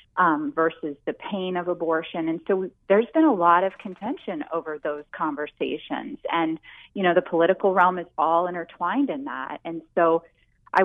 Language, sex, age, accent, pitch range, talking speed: English, female, 30-49, American, 160-205 Hz, 170 wpm